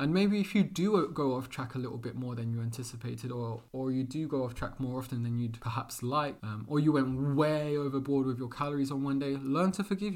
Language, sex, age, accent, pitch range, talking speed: English, male, 20-39, British, 120-150 Hz, 255 wpm